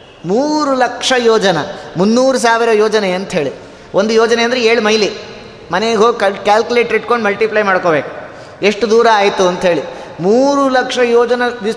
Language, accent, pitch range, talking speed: Kannada, native, 195-250 Hz, 135 wpm